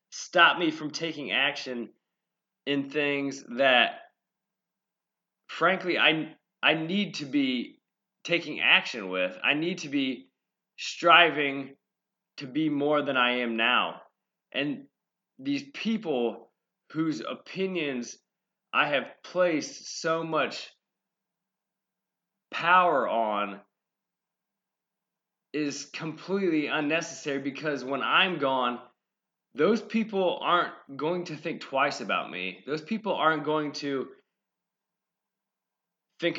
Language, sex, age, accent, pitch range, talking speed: English, male, 20-39, American, 140-205 Hz, 105 wpm